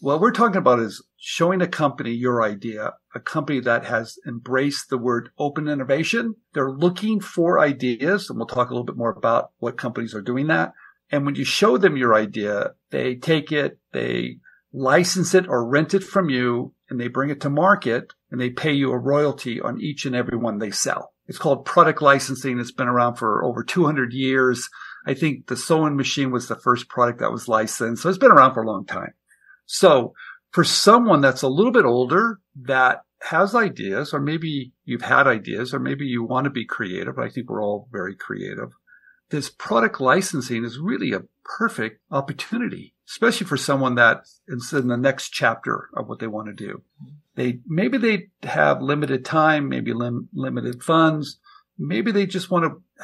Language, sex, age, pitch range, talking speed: English, male, 50-69, 120-170 Hz, 195 wpm